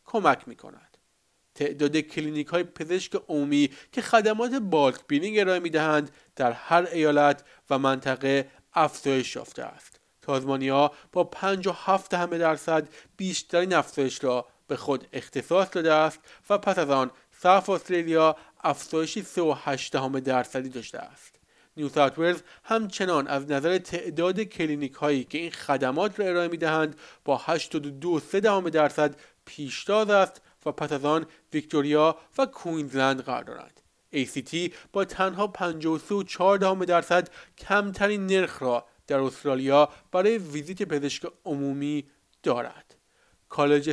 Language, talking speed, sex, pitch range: Persian, 125 wpm, male, 145-185 Hz